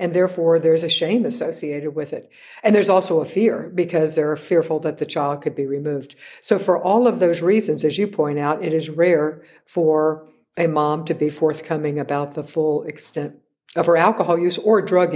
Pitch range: 155-190 Hz